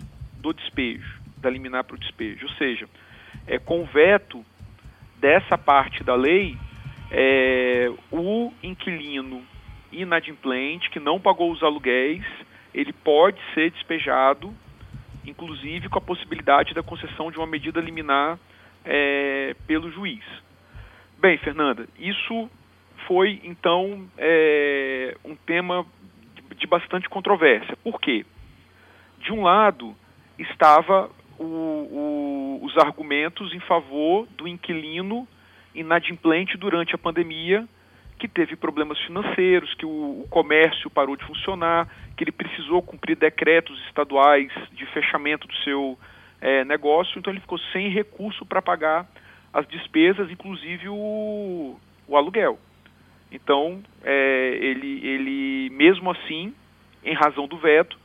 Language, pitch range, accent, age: Portuguese, 140-185 Hz, Brazilian, 40-59